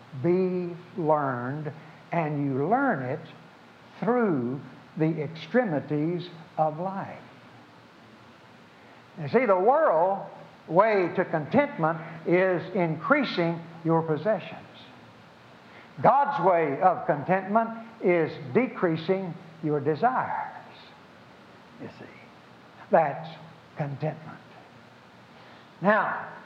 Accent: American